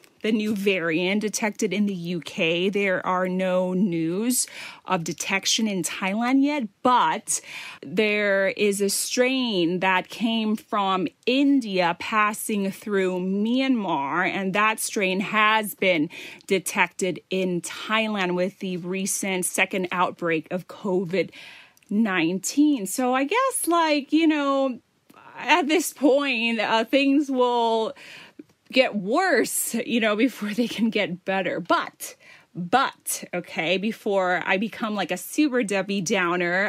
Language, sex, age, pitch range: Thai, female, 30-49, 185-255 Hz